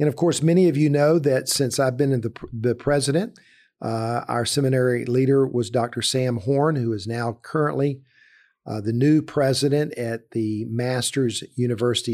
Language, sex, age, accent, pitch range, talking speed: English, male, 50-69, American, 120-150 Hz, 175 wpm